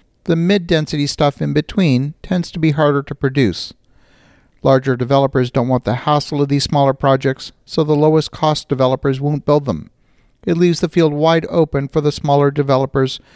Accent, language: American, English